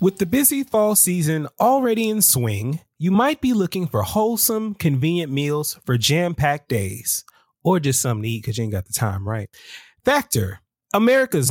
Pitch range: 125-195 Hz